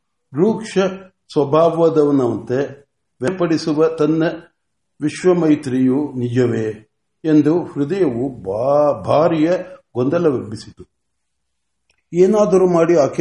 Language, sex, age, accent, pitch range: Marathi, male, 60-79, native, 135-170 Hz